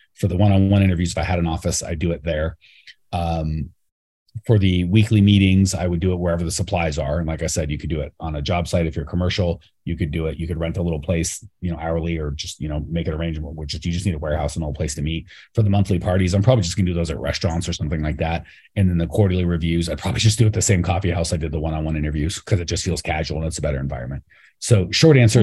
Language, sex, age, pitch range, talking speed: English, male, 30-49, 80-100 Hz, 290 wpm